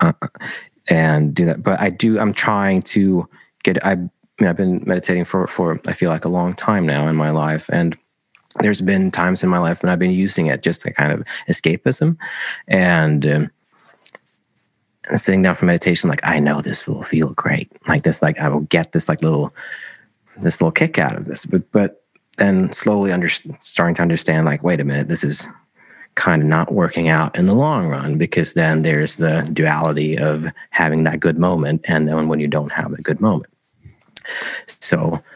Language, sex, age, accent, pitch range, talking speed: English, male, 30-49, American, 80-100 Hz, 200 wpm